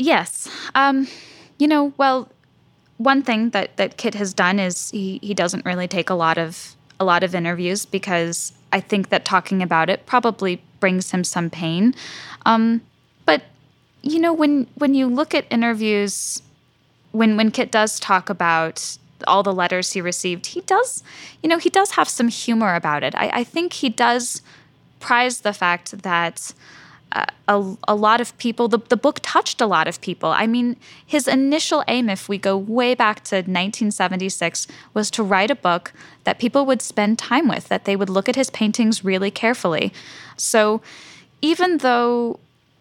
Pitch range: 185-240 Hz